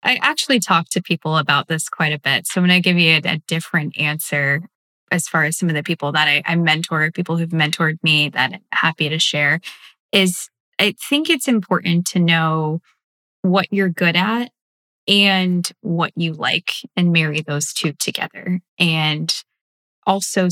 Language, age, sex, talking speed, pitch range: English, 10-29, female, 180 wpm, 155-180 Hz